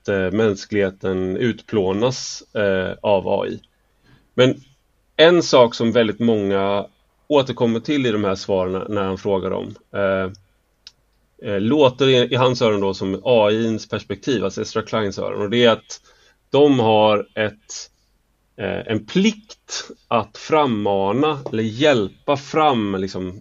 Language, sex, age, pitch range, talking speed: English, male, 30-49, 100-130 Hz, 130 wpm